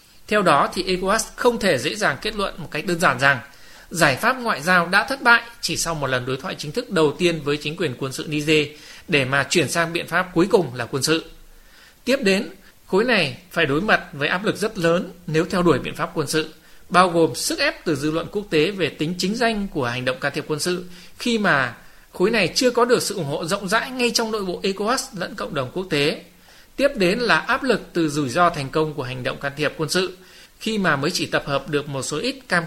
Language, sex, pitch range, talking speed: Vietnamese, male, 150-195 Hz, 255 wpm